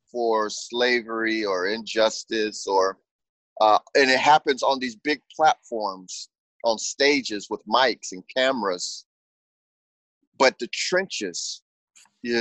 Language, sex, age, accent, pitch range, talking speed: English, male, 30-49, American, 105-135 Hz, 110 wpm